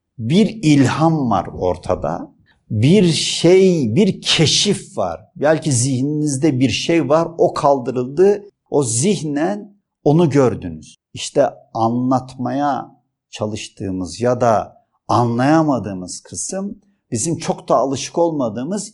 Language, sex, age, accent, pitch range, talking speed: Turkish, male, 50-69, native, 110-165 Hz, 100 wpm